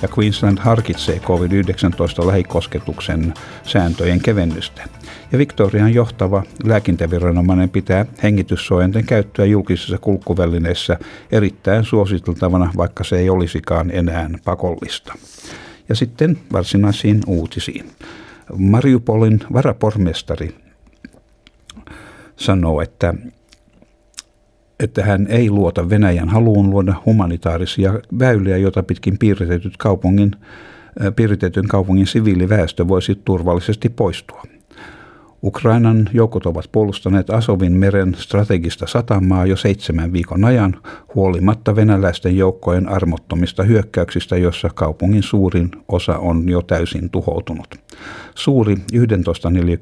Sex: male